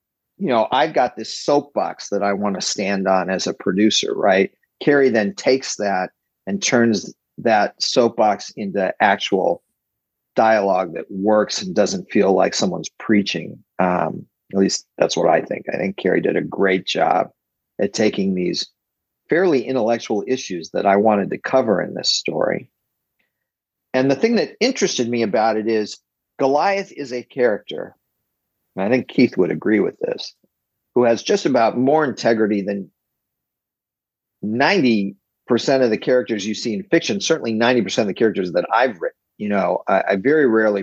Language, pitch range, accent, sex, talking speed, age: English, 105-135 Hz, American, male, 165 wpm, 50-69